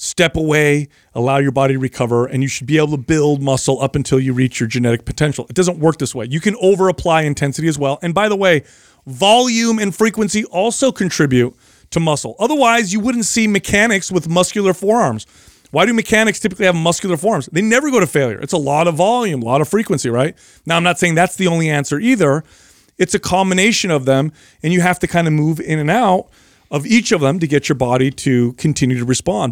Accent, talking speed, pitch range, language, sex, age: American, 225 wpm, 135-185 Hz, English, male, 40-59